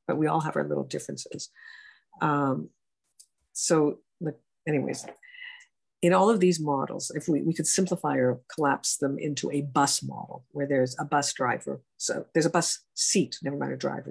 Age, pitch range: 50-69, 140-185 Hz